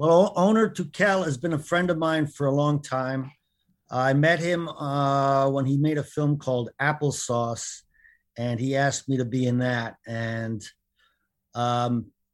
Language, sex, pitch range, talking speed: English, male, 120-155 Hz, 165 wpm